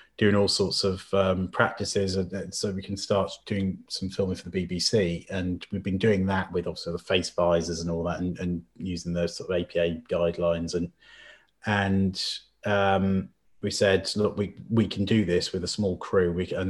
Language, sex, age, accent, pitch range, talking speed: English, male, 30-49, British, 85-100 Hz, 200 wpm